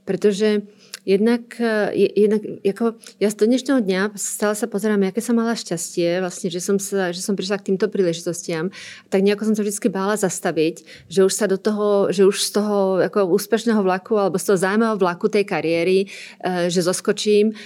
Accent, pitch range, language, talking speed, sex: native, 185-215 Hz, Czech, 165 wpm, female